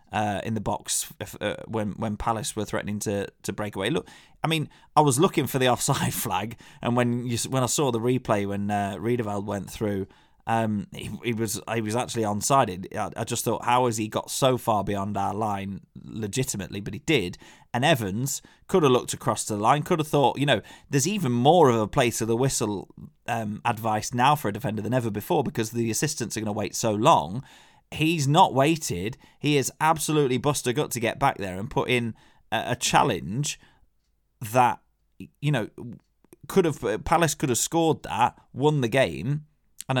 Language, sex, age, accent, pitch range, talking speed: English, male, 20-39, British, 105-140 Hz, 200 wpm